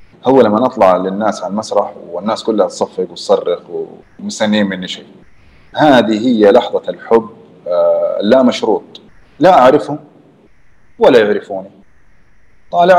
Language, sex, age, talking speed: Arabic, male, 30-49, 110 wpm